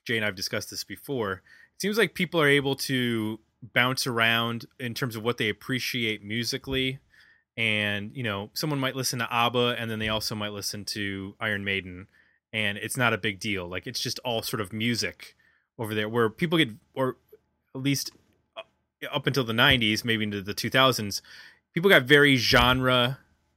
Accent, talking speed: American, 190 wpm